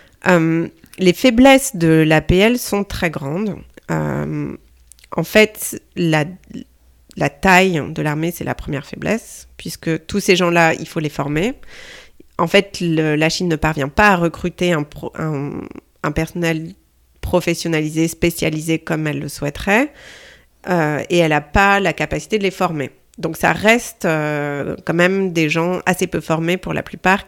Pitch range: 155-195 Hz